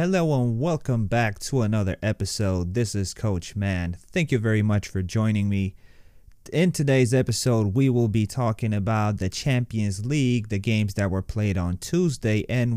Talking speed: 175 wpm